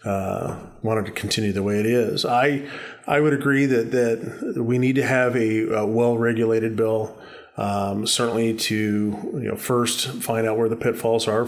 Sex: male